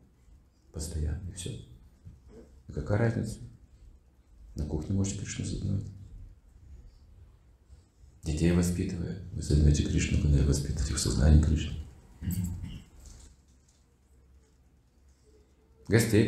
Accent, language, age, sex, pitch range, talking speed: native, Russian, 40-59, male, 70-115 Hz, 85 wpm